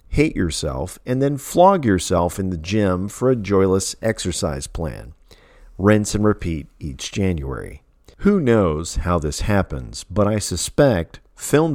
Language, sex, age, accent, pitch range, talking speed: English, male, 50-69, American, 85-110 Hz, 145 wpm